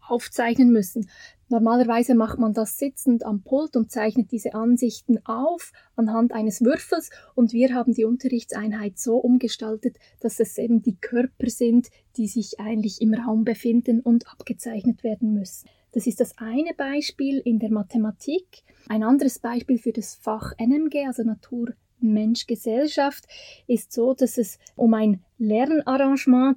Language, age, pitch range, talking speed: German, 20-39, 225-260 Hz, 145 wpm